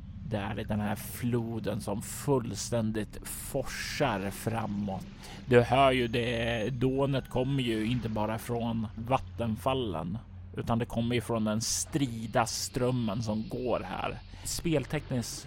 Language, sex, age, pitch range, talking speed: Swedish, male, 30-49, 105-125 Hz, 125 wpm